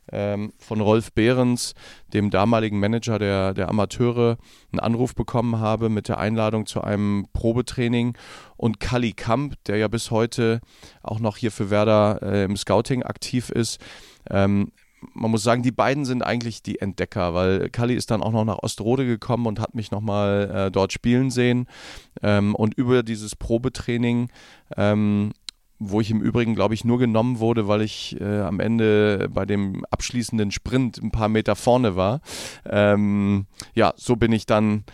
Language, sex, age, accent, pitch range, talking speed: German, male, 40-59, German, 100-120 Hz, 170 wpm